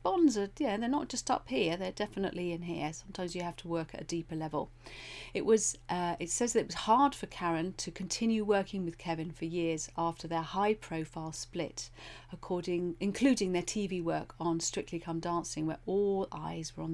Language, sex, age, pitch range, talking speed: English, female, 40-59, 160-205 Hz, 205 wpm